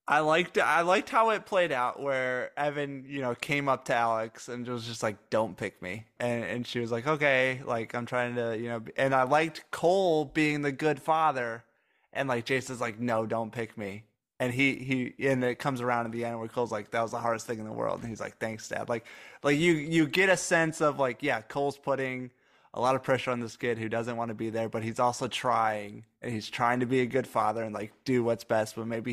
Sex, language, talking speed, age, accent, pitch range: male, English, 250 wpm, 20-39, American, 115-140 Hz